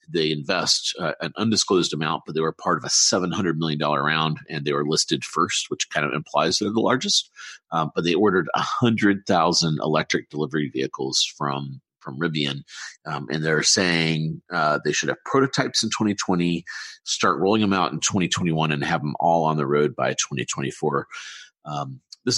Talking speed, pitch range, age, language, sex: 175 wpm, 75-90 Hz, 40-59, English, male